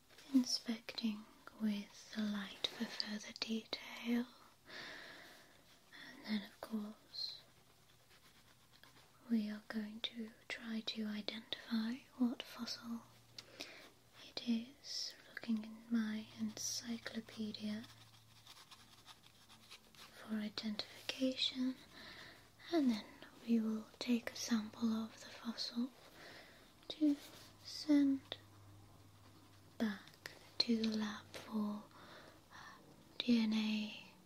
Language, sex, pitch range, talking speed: English, female, 210-245 Hz, 80 wpm